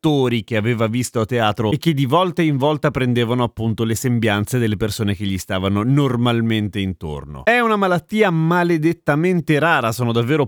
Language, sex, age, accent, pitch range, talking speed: Italian, male, 30-49, native, 120-180 Hz, 165 wpm